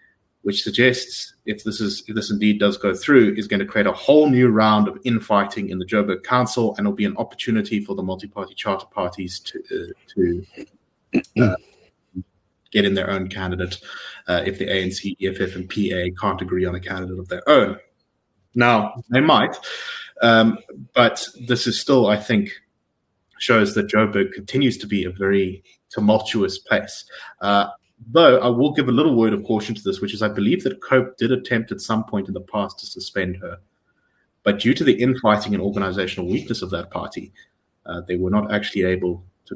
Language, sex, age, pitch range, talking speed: English, male, 20-39, 95-125 Hz, 190 wpm